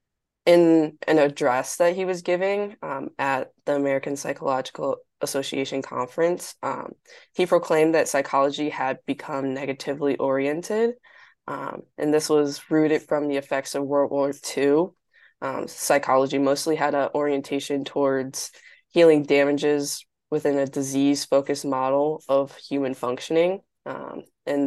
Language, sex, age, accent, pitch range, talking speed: English, female, 20-39, American, 135-160 Hz, 130 wpm